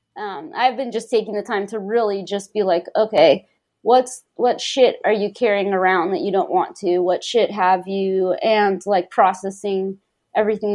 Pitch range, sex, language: 200-245 Hz, female, English